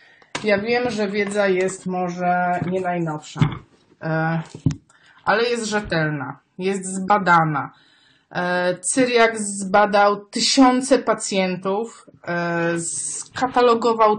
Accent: native